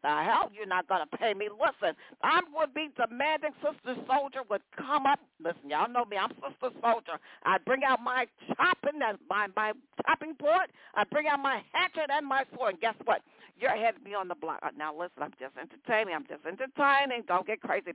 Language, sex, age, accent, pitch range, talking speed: English, female, 50-69, American, 200-295 Hz, 215 wpm